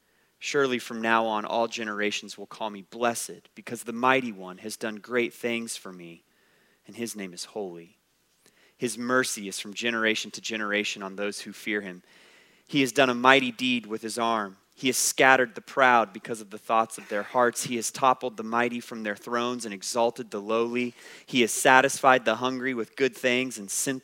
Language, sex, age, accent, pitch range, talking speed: English, male, 30-49, American, 105-130 Hz, 200 wpm